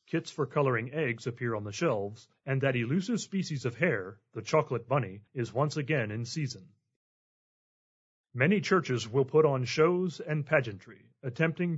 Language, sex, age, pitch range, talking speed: English, male, 40-59, 120-160 Hz, 160 wpm